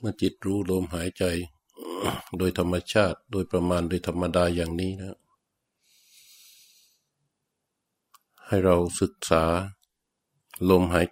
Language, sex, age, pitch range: Thai, male, 60-79, 85-95 Hz